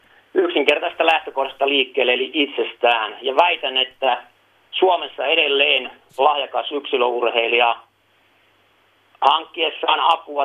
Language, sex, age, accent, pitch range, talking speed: Finnish, male, 40-59, native, 130-175 Hz, 80 wpm